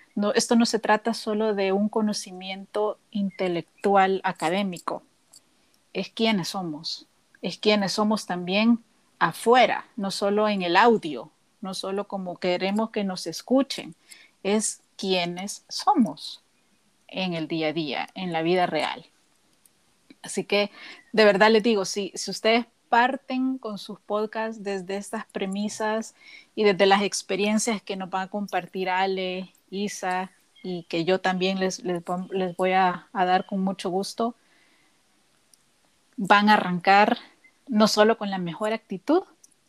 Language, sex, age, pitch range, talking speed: Spanish, female, 40-59, 190-235 Hz, 140 wpm